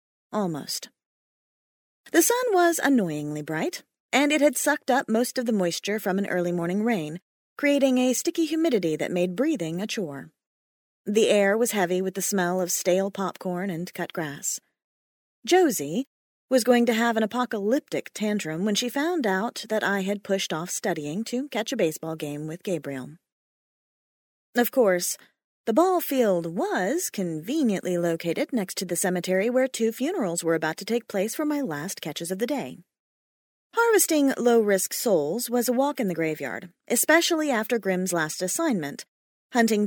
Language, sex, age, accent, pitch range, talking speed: English, female, 30-49, American, 175-260 Hz, 165 wpm